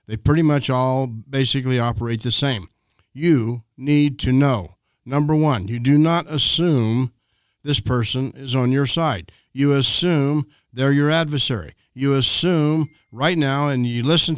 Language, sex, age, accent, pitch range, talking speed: English, male, 50-69, American, 125-150 Hz, 150 wpm